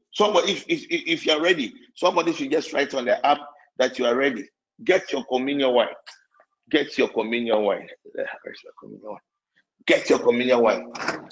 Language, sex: English, male